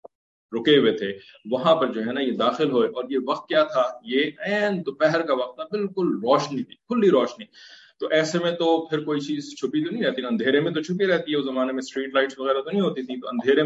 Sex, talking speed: male, 245 wpm